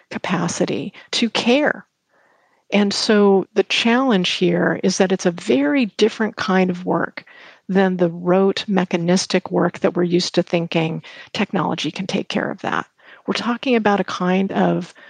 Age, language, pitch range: 50-69, English, 180-215 Hz